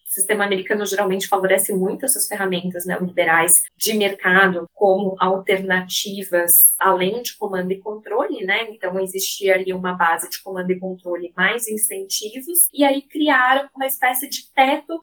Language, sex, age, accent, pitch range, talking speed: Portuguese, female, 10-29, Brazilian, 200-280 Hz, 150 wpm